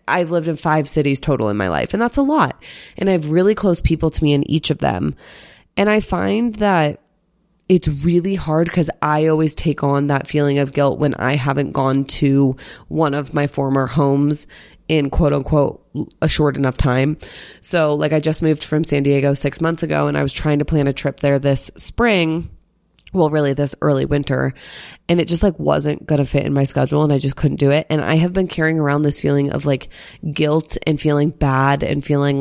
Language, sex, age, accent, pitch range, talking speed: English, female, 20-39, American, 140-165 Hz, 215 wpm